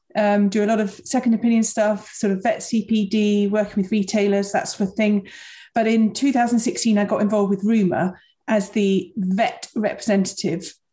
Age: 40-59